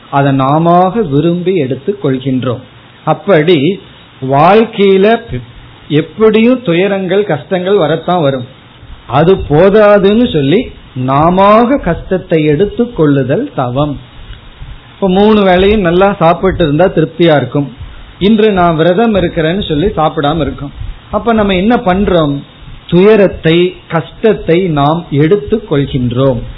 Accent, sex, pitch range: native, male, 145-195 Hz